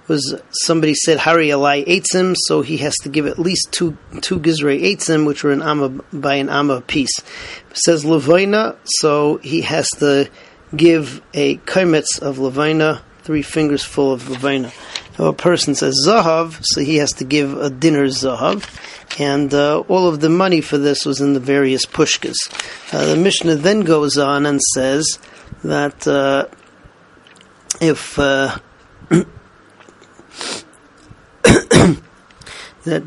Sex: male